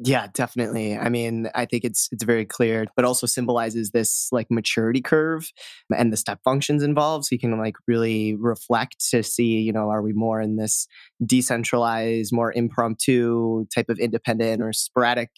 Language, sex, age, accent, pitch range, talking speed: English, male, 20-39, American, 110-120 Hz, 175 wpm